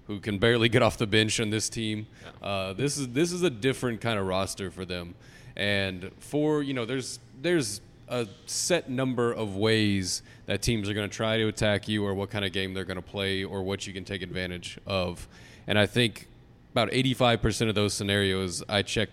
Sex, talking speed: male, 215 wpm